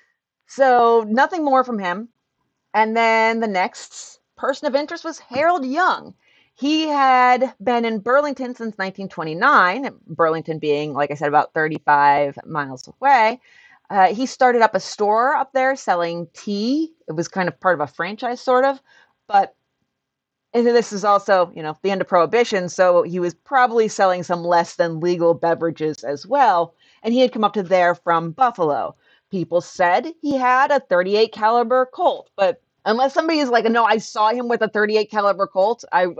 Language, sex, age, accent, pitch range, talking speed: English, female, 30-49, American, 175-250 Hz, 175 wpm